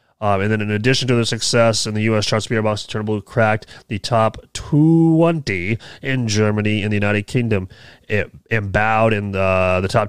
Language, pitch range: English, 100-120 Hz